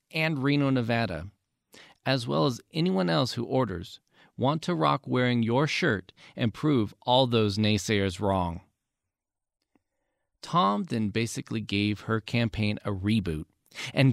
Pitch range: 110-150 Hz